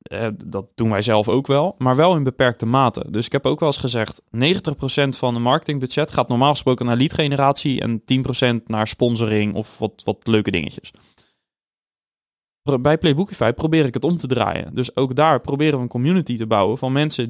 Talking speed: 195 wpm